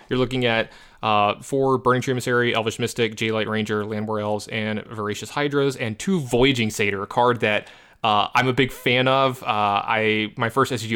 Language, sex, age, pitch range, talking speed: English, male, 20-39, 105-130 Hz, 190 wpm